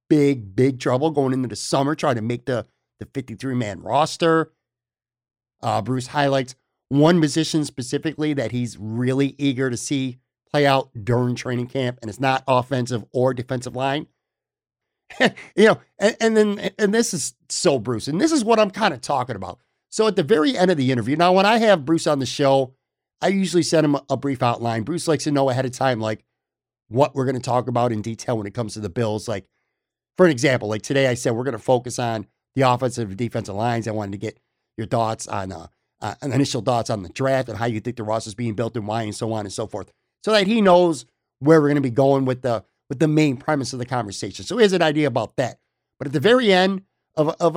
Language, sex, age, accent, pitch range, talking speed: English, male, 50-69, American, 120-150 Hz, 230 wpm